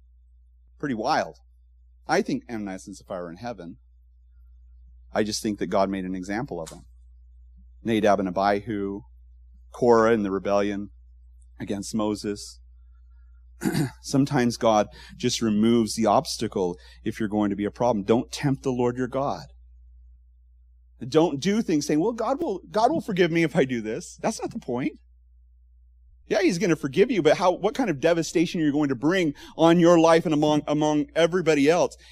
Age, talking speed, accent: 30-49, 170 wpm, American